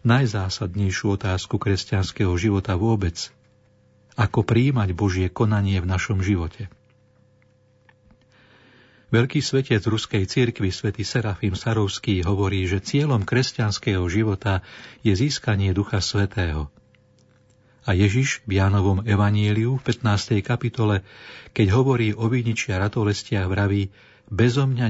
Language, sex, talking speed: Slovak, male, 105 wpm